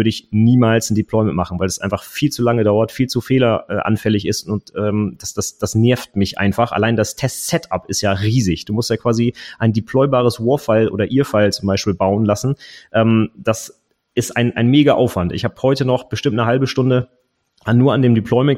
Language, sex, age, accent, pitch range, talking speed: German, male, 30-49, German, 105-125 Hz, 205 wpm